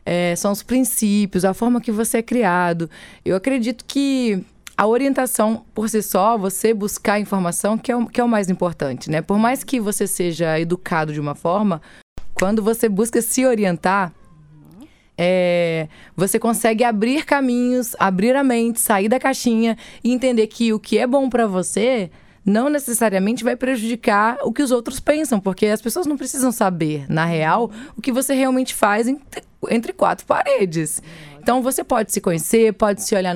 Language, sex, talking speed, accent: Portuguese, female, 180 wpm, Brazilian